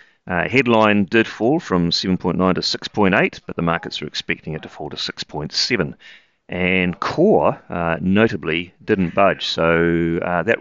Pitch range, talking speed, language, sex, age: 85-110 Hz, 155 wpm, English, male, 40-59